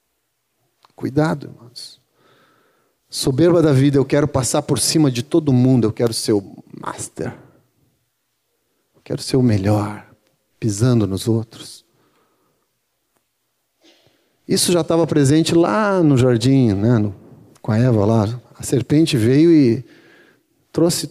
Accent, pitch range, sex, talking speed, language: Brazilian, 120-165 Hz, male, 120 wpm, Portuguese